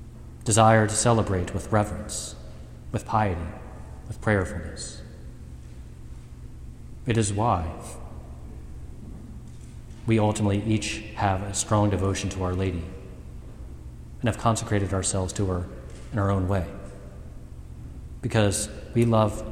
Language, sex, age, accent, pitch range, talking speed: English, male, 40-59, American, 65-110 Hz, 110 wpm